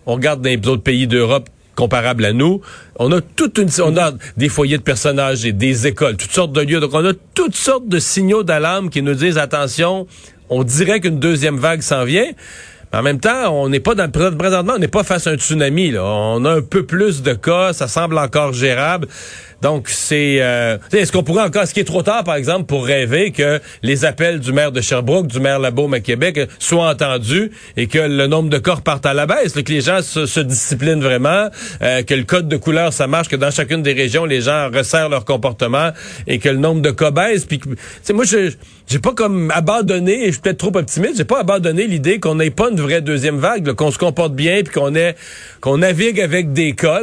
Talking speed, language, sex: 235 wpm, French, male